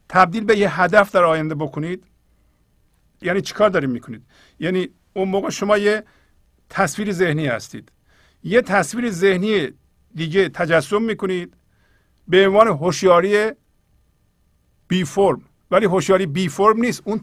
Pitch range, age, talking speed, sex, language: 150-205 Hz, 50-69, 125 wpm, male, Persian